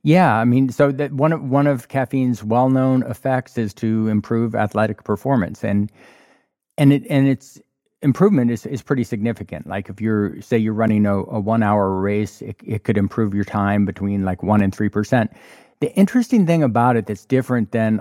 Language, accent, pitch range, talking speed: English, American, 105-130 Hz, 195 wpm